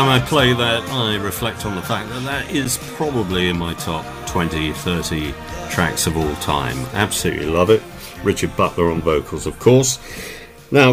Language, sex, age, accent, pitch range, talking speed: English, male, 50-69, British, 85-120 Hz, 170 wpm